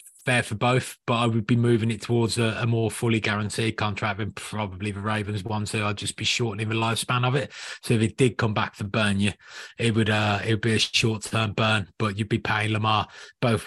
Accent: British